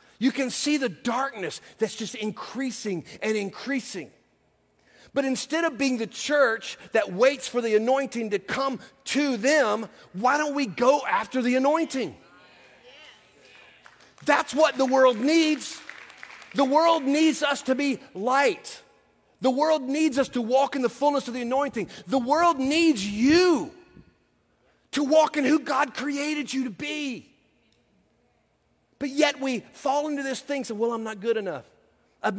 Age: 40-59